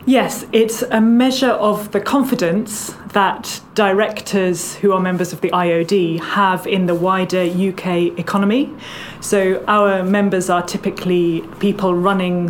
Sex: female